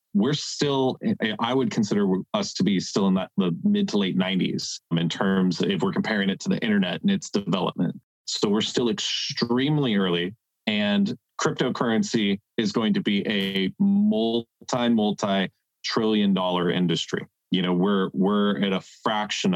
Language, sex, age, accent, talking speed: English, male, 30-49, American, 155 wpm